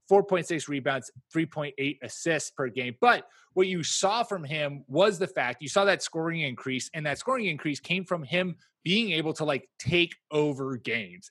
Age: 30-49